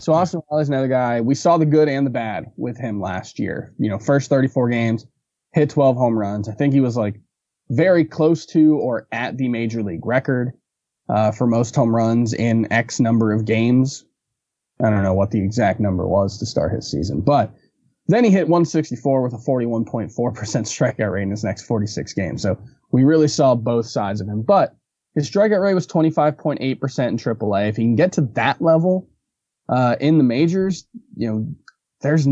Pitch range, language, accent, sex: 110-145 Hz, English, American, male